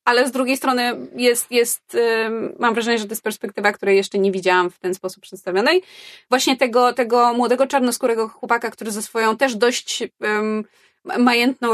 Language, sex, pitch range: Polish, female, 195-230 Hz